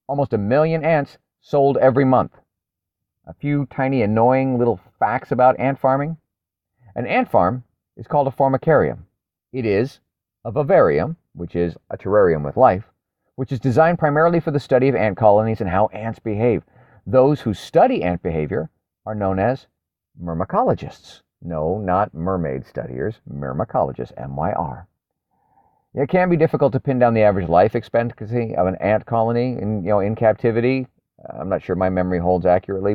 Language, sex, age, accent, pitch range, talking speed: English, male, 40-59, American, 95-135 Hz, 160 wpm